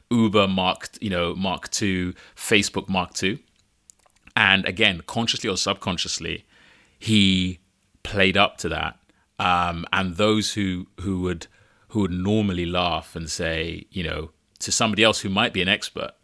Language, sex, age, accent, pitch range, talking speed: English, male, 30-49, British, 85-100 Hz, 150 wpm